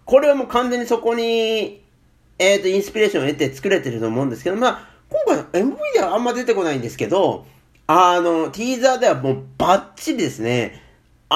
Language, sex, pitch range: Japanese, male, 150-235 Hz